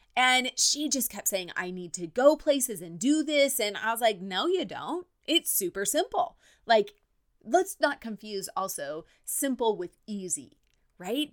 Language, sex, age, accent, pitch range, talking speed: English, female, 30-49, American, 180-270 Hz, 170 wpm